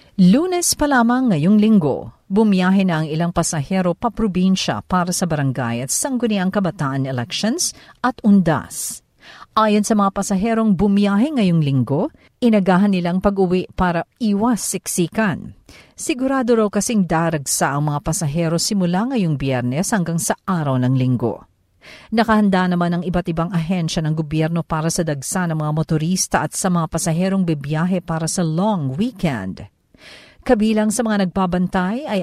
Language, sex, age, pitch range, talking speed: Filipino, female, 50-69, 160-215 Hz, 140 wpm